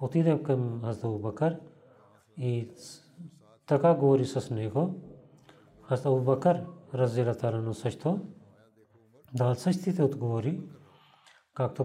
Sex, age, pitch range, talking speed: male, 40-59, 125-150 Hz, 90 wpm